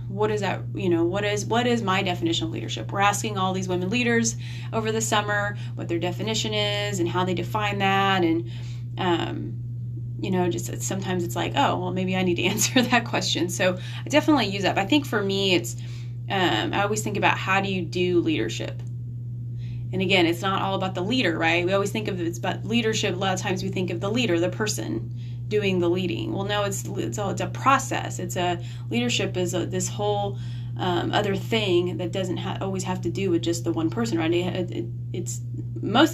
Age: 20-39